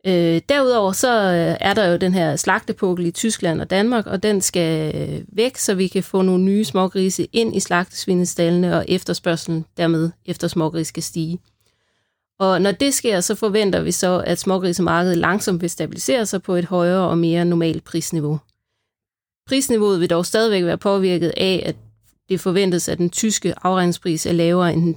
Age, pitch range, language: 30-49, 165-195 Hz, Danish